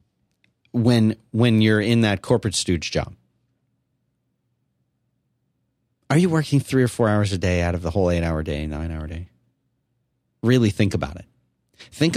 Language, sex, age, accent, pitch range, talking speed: English, male, 40-59, American, 90-125 Hz, 160 wpm